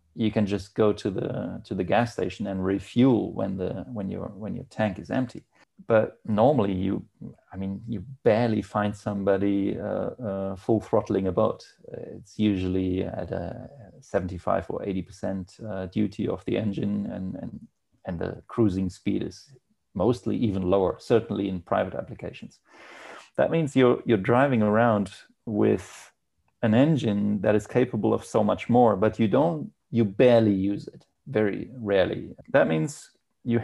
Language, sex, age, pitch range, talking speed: English, male, 30-49, 95-115 Hz, 160 wpm